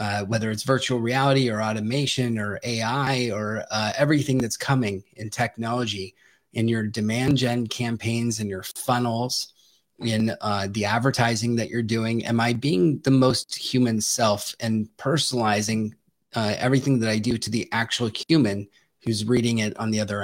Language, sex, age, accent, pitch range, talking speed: English, male, 30-49, American, 110-135 Hz, 165 wpm